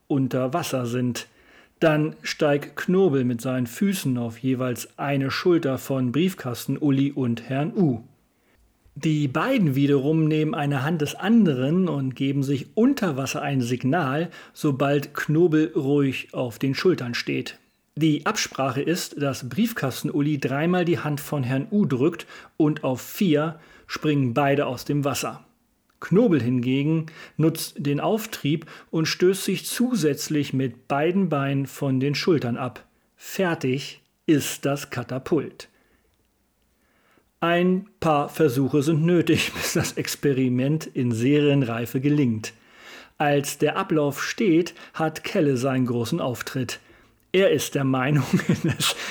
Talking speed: 130 wpm